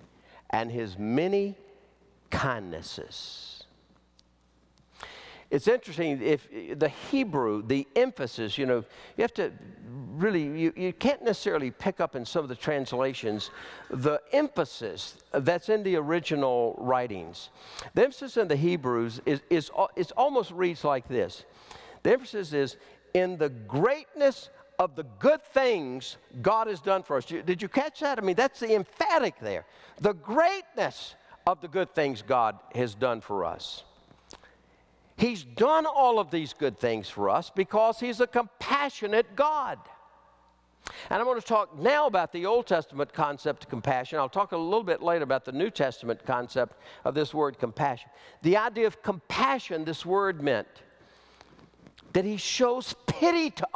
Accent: American